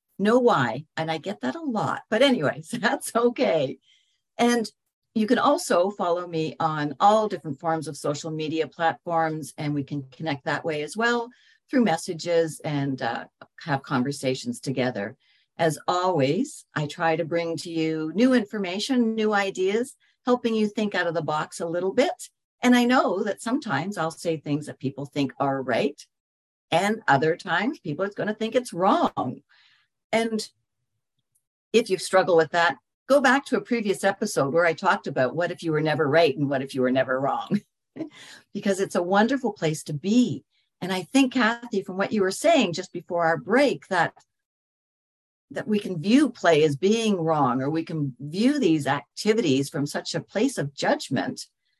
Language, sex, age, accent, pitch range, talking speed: English, female, 60-79, American, 150-220 Hz, 180 wpm